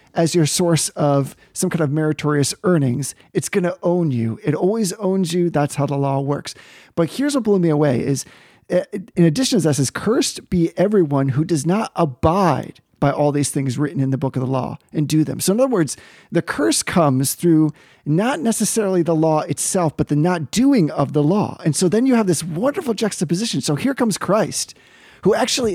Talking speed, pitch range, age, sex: 210 wpm, 150-195 Hz, 40-59, male